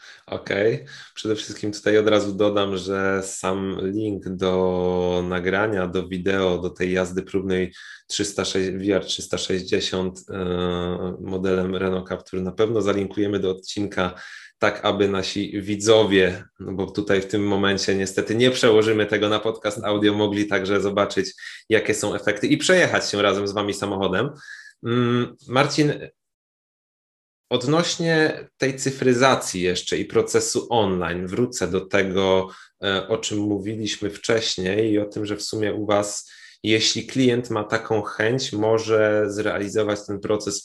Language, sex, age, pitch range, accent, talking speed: Polish, male, 20-39, 95-125 Hz, native, 140 wpm